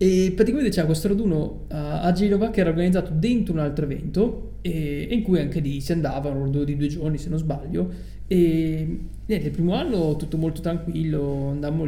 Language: Italian